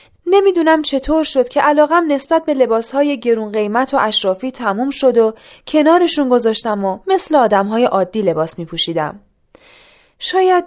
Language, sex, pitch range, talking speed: Persian, female, 205-290 Hz, 135 wpm